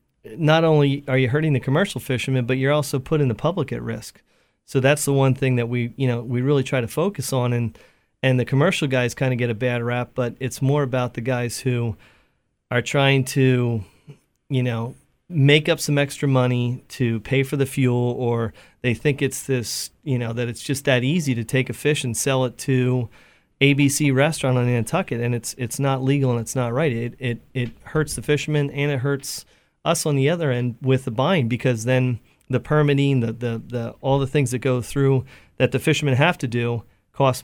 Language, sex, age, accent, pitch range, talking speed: English, male, 30-49, American, 120-140 Hz, 215 wpm